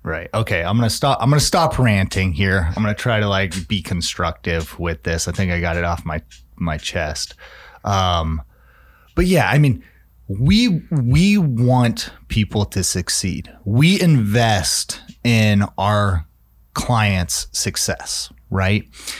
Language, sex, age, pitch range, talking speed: English, male, 30-49, 95-120 Hz, 155 wpm